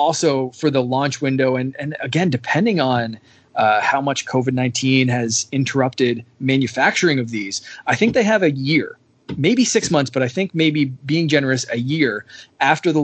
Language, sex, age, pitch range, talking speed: English, male, 20-39, 125-150 Hz, 175 wpm